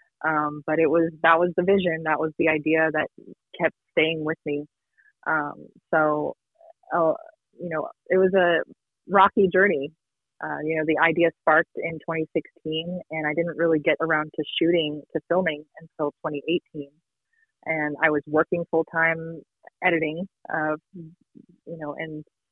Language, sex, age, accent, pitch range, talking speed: English, female, 30-49, American, 150-175 Hz, 155 wpm